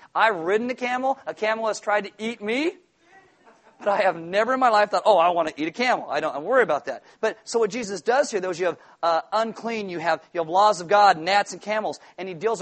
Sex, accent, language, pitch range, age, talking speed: male, American, English, 165-230 Hz, 40-59, 255 wpm